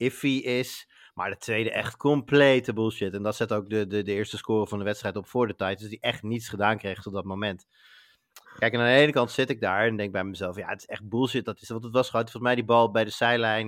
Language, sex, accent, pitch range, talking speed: Dutch, male, Dutch, 105-120 Hz, 280 wpm